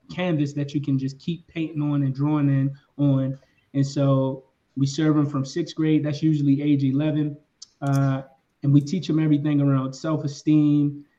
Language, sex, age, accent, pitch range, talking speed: English, male, 20-39, American, 135-150 Hz, 170 wpm